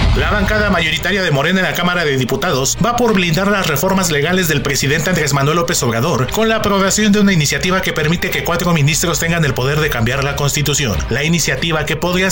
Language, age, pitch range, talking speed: Spanish, 30-49, 140-180 Hz, 215 wpm